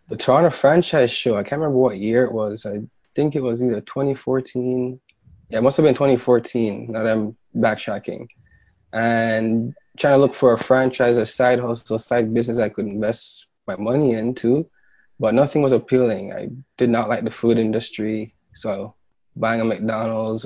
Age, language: 20-39, English